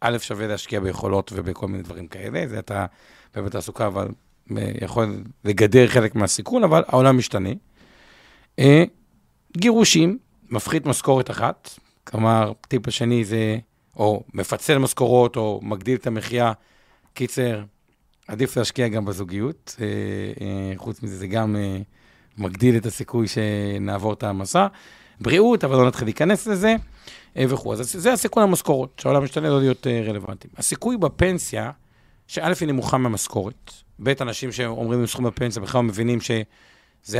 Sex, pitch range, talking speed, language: male, 105-140 Hz, 130 wpm, Hebrew